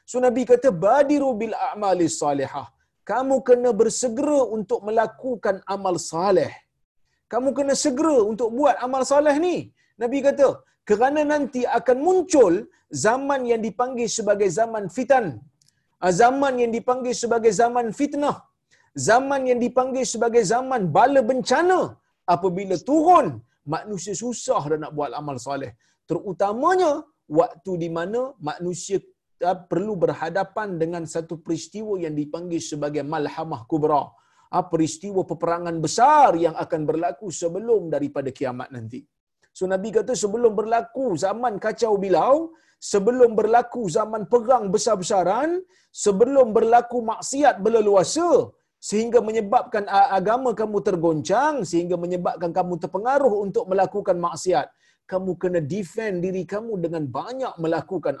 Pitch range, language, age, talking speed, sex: 175-250 Hz, Malayalam, 50-69, 125 wpm, male